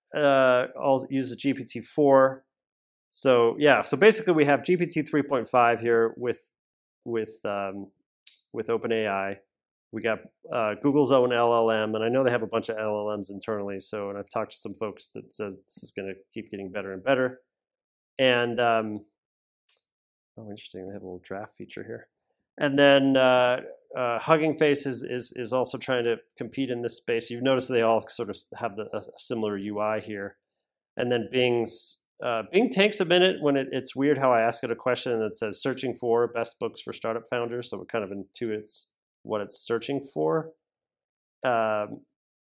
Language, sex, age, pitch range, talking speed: English, male, 30-49, 110-135 Hz, 180 wpm